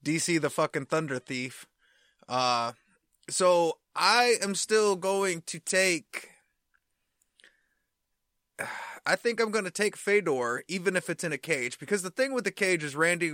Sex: male